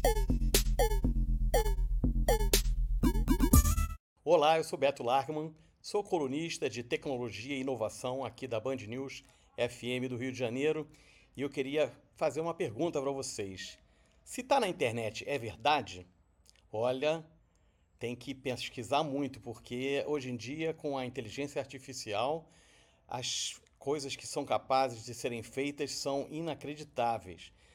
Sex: male